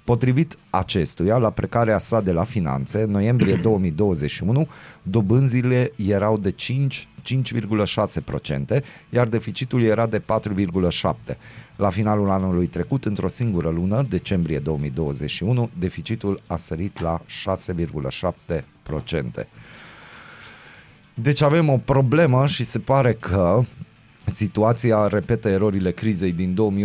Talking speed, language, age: 105 wpm, Romanian, 30-49